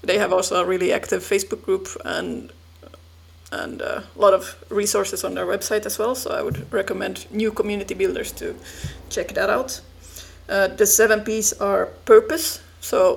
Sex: female